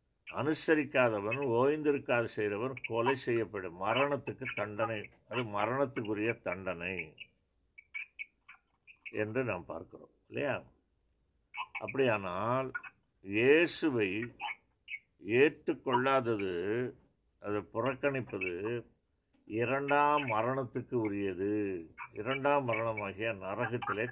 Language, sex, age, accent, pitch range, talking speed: Tamil, male, 60-79, native, 105-130 Hz, 60 wpm